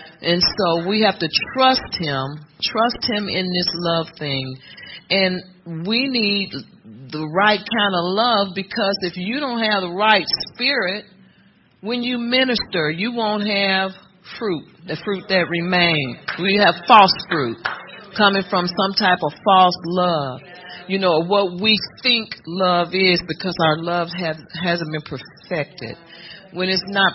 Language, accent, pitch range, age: English, American, 165-210 Hz, 40-59